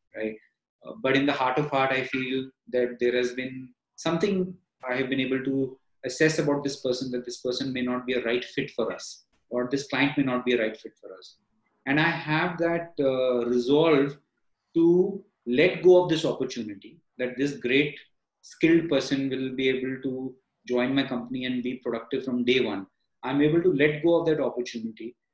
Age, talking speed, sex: 30-49, 200 wpm, male